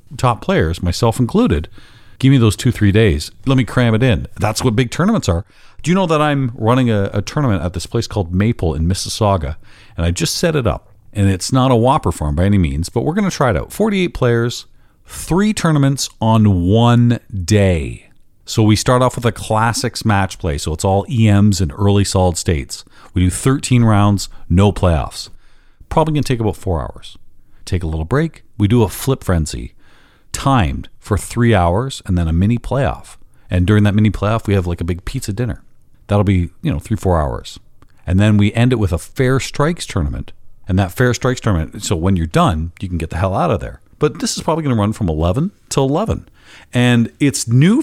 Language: English